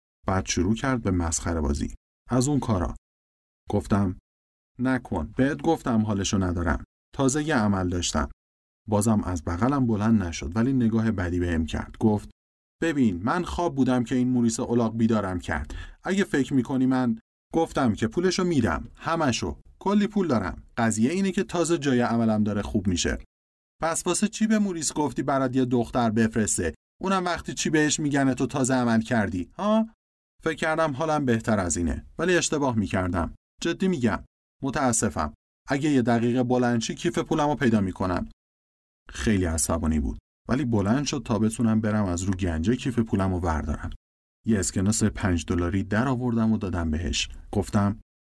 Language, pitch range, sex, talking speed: Persian, 85-130 Hz, male, 160 wpm